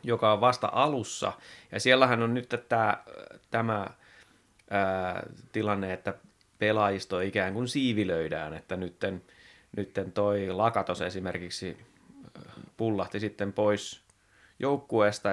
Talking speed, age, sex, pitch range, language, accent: 100 wpm, 30-49, male, 95-115 Hz, Finnish, native